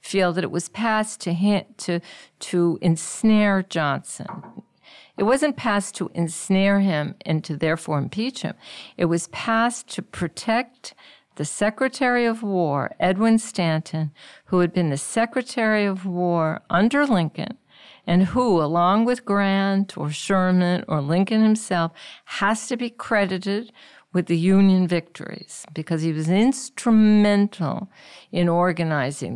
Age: 50-69